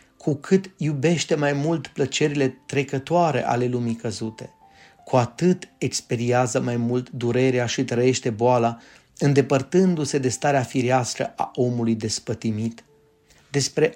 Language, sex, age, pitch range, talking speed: Romanian, male, 30-49, 125-155 Hz, 115 wpm